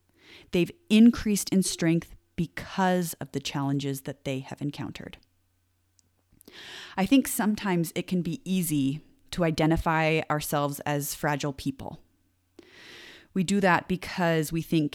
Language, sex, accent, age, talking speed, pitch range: English, female, American, 30-49, 125 wpm, 145-190 Hz